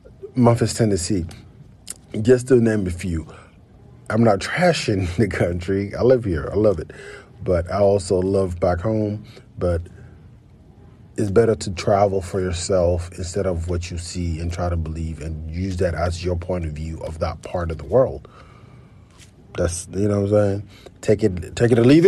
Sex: male